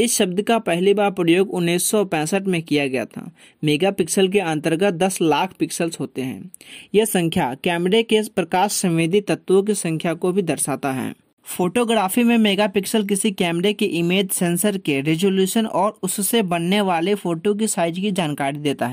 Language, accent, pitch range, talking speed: Hindi, native, 165-205 Hz, 165 wpm